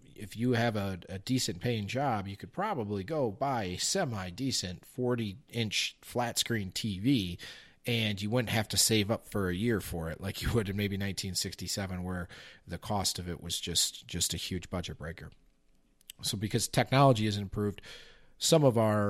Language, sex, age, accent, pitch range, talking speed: English, male, 40-59, American, 90-115 Hz, 180 wpm